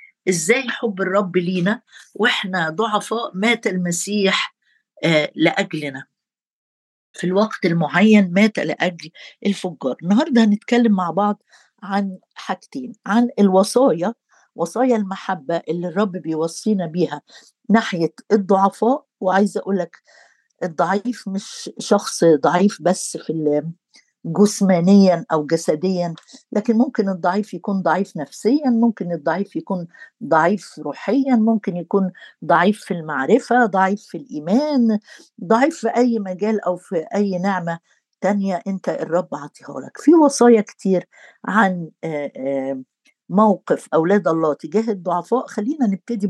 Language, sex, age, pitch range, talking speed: Arabic, female, 50-69, 175-225 Hz, 110 wpm